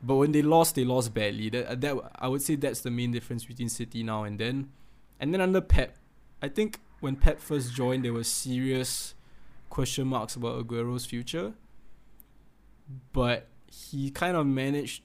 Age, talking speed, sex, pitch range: 20-39, 170 wpm, male, 120-135 Hz